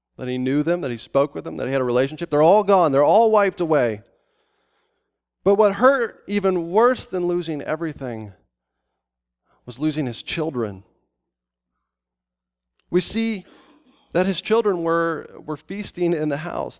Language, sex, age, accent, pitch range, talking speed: English, male, 30-49, American, 130-190 Hz, 155 wpm